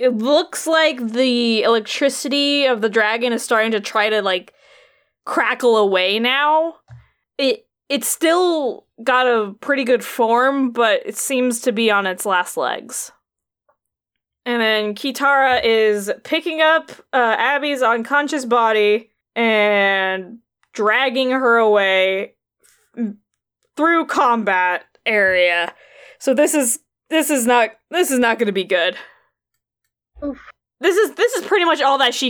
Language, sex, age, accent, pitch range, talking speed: English, female, 20-39, American, 215-285 Hz, 135 wpm